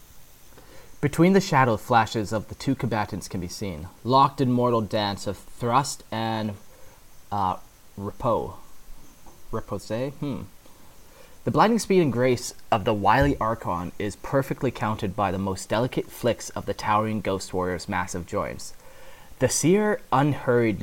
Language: English